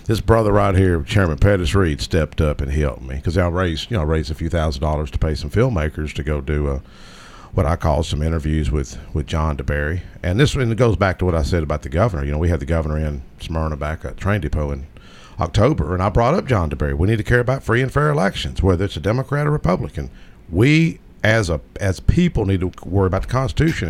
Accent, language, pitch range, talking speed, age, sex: American, English, 80-110 Hz, 245 wpm, 50-69, male